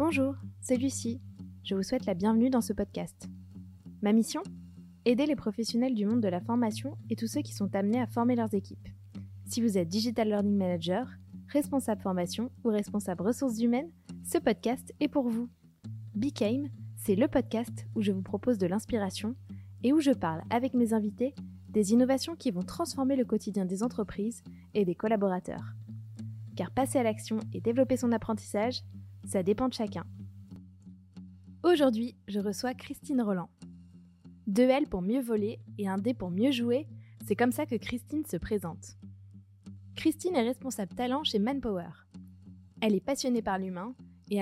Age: 20-39